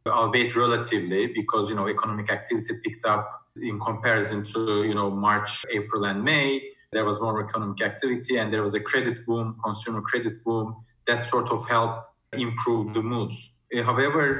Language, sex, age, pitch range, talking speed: English, male, 30-49, 110-120 Hz, 165 wpm